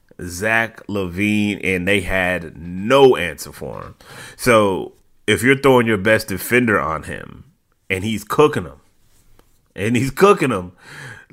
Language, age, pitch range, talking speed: English, 30-49, 95-120 Hz, 140 wpm